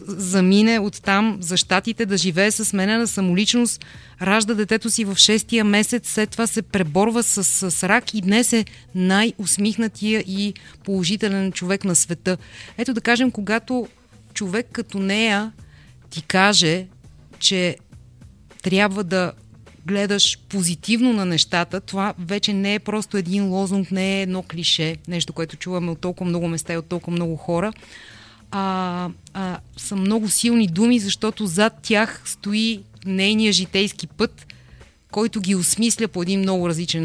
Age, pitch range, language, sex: 30-49, 180-220 Hz, Bulgarian, female